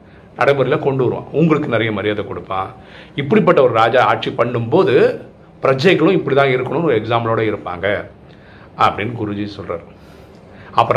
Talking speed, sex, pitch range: 125 wpm, male, 105-130 Hz